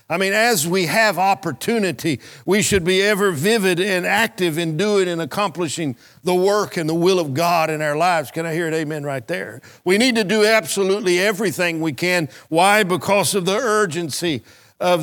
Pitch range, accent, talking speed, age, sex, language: 160-195 Hz, American, 190 wpm, 50-69, male, English